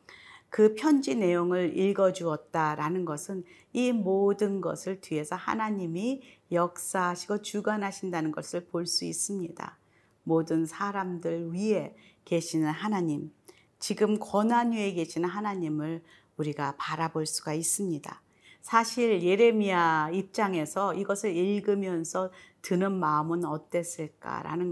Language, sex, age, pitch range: Korean, female, 40-59, 165-200 Hz